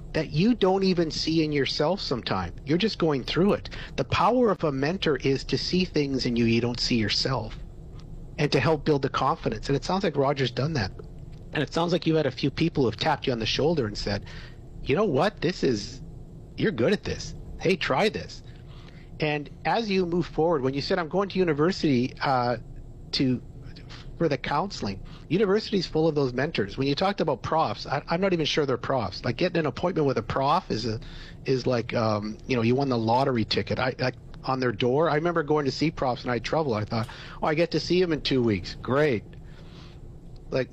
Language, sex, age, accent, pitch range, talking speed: English, male, 50-69, American, 125-160 Hz, 225 wpm